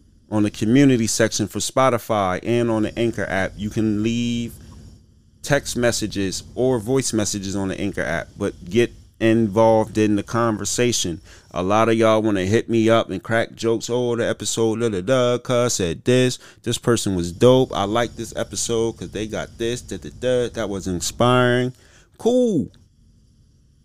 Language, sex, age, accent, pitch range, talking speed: English, male, 30-49, American, 105-130 Hz, 155 wpm